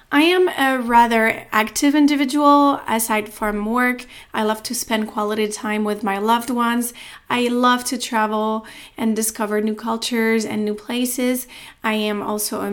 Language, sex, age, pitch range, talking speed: English, female, 30-49, 210-260 Hz, 160 wpm